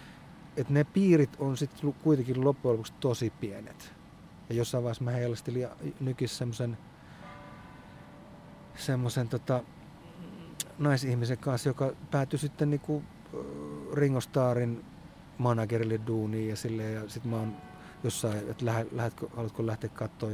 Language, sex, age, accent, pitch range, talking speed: Finnish, male, 30-49, native, 115-140 Hz, 115 wpm